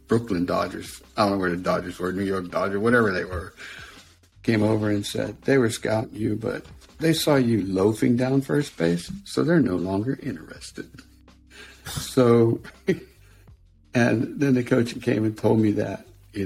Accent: American